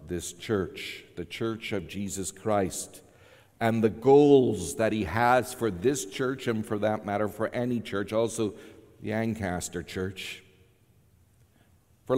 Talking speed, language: 140 wpm, English